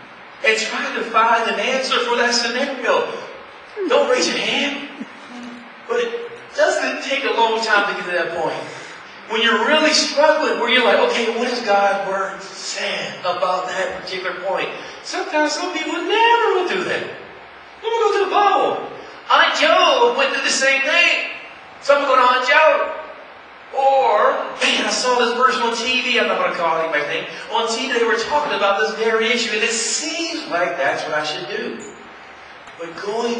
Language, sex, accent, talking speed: English, male, American, 185 wpm